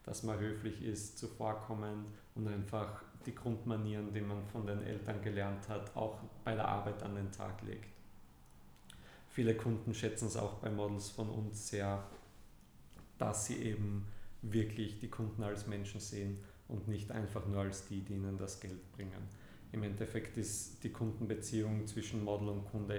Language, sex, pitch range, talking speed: German, male, 100-110 Hz, 165 wpm